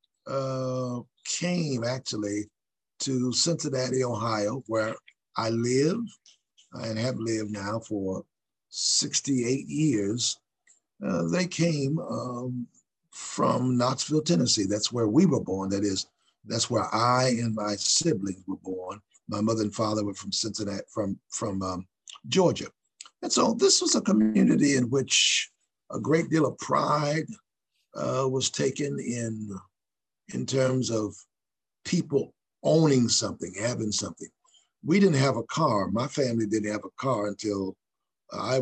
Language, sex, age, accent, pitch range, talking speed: English, male, 50-69, American, 105-140 Hz, 135 wpm